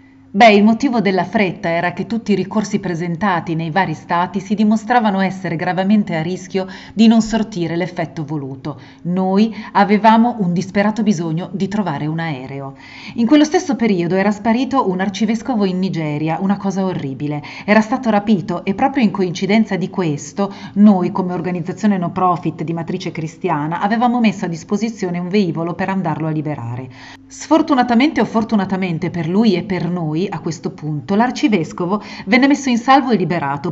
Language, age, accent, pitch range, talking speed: Italian, 40-59, native, 170-215 Hz, 165 wpm